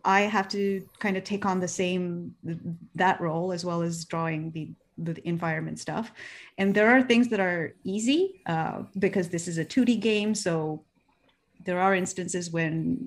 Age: 30-49